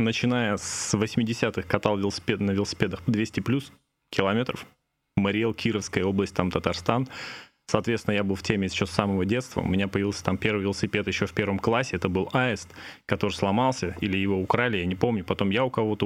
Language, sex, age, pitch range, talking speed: Russian, male, 20-39, 100-120 Hz, 185 wpm